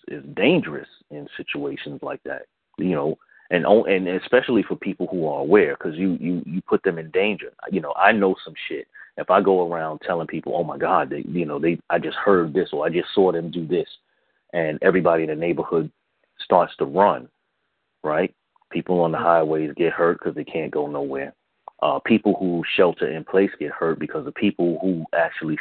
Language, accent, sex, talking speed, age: English, American, male, 205 wpm, 30-49